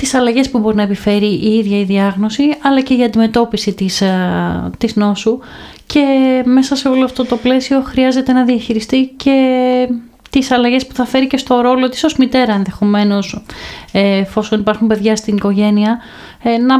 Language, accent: Greek, native